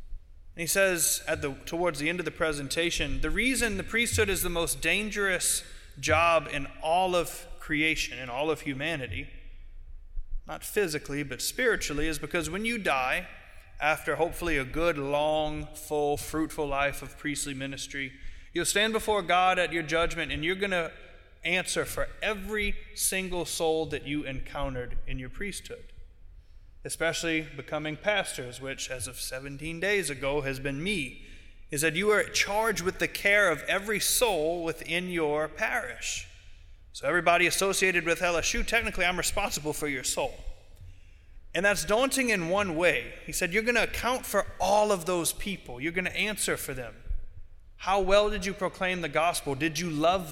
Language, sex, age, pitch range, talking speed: English, male, 30-49, 140-185 Hz, 165 wpm